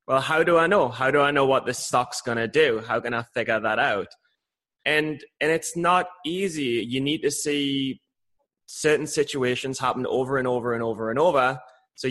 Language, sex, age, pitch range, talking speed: English, male, 20-39, 120-150 Hz, 205 wpm